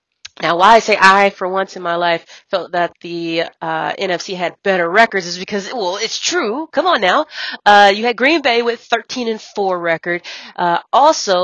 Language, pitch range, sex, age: English, 170-210 Hz, female, 30-49